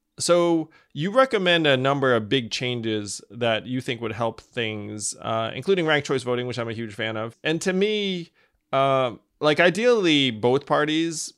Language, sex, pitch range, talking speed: English, male, 115-155 Hz, 175 wpm